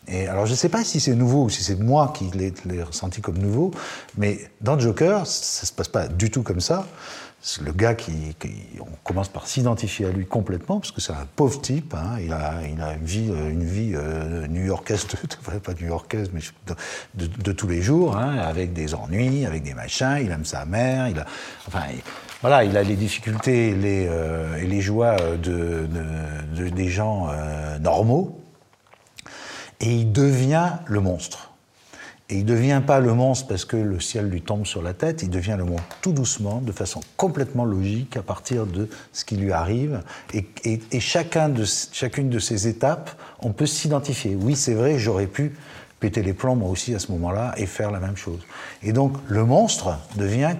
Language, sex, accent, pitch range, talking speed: English, male, French, 90-130 Hz, 210 wpm